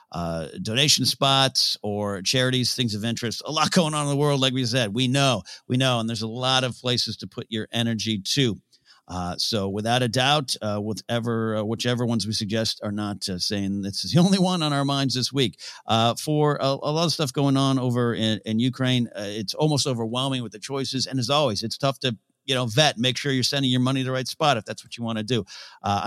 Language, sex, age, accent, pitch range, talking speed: English, male, 50-69, American, 95-130 Hz, 245 wpm